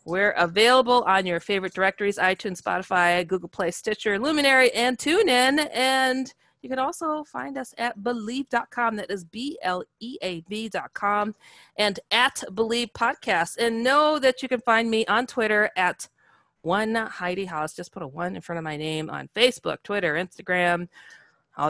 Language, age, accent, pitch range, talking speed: English, 30-49, American, 175-245 Hz, 165 wpm